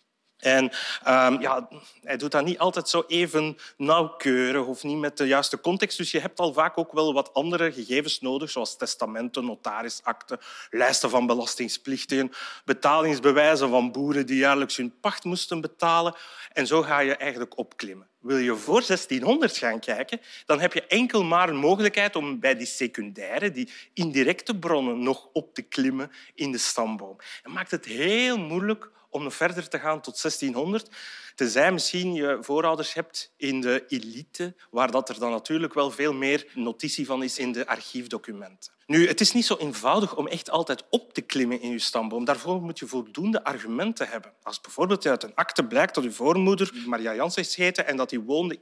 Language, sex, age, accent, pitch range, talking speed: Dutch, male, 30-49, Belgian, 130-180 Hz, 180 wpm